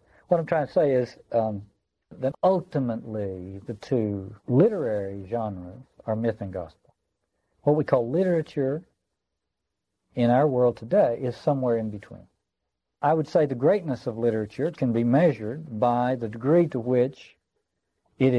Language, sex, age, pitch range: English, male, 60-79, 105-135 Hz